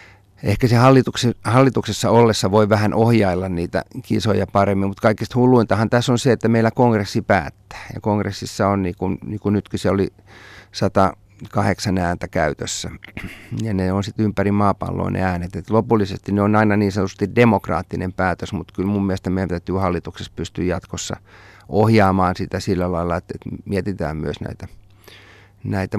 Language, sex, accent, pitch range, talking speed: Finnish, male, native, 90-110 Hz, 160 wpm